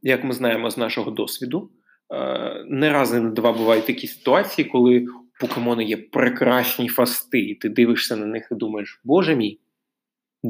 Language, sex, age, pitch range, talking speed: Ukrainian, male, 20-39, 115-125 Hz, 160 wpm